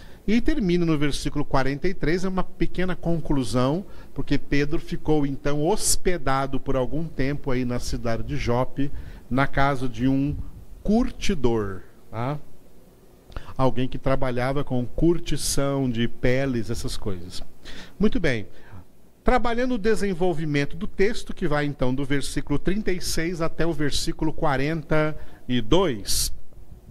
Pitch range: 125-160 Hz